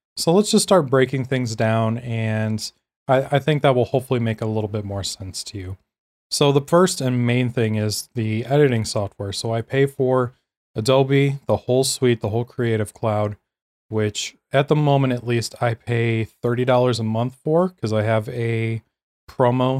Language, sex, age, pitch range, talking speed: English, male, 20-39, 115-140 Hz, 185 wpm